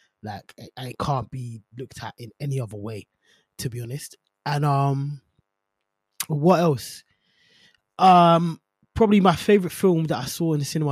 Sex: male